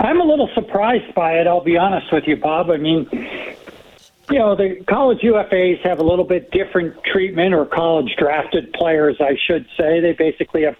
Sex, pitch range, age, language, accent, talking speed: male, 150-195 Hz, 60-79, English, American, 190 wpm